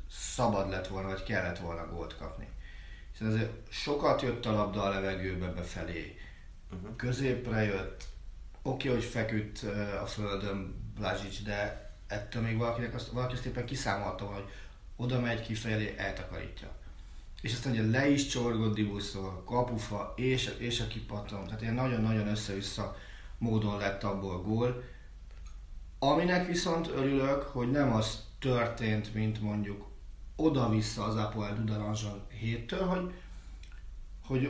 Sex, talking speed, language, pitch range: male, 130 wpm, Hungarian, 100-125 Hz